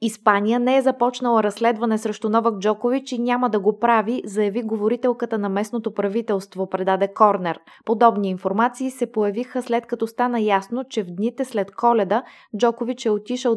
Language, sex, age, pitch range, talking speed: Bulgarian, female, 20-39, 200-240 Hz, 160 wpm